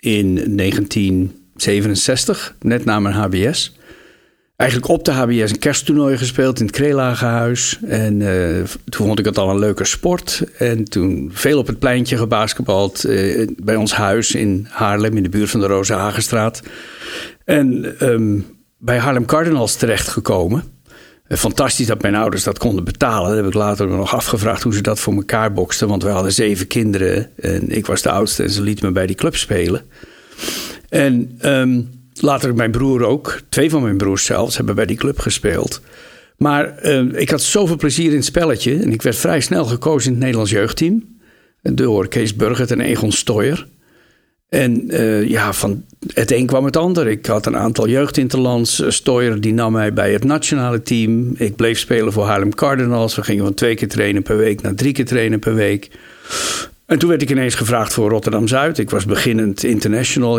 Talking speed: 185 wpm